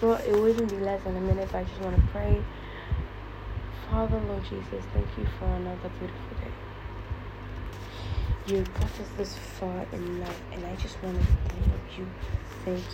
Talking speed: 180 wpm